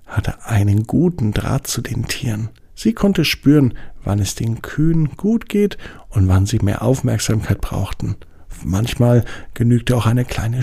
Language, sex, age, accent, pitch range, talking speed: German, male, 50-69, German, 105-140 Hz, 150 wpm